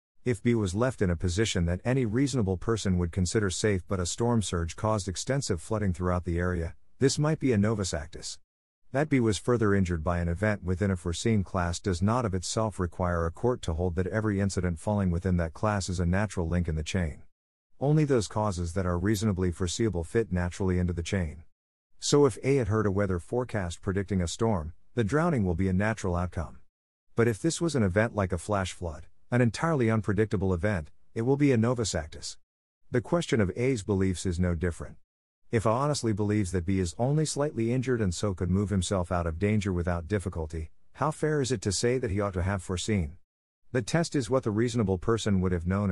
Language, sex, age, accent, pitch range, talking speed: English, male, 50-69, American, 90-115 Hz, 215 wpm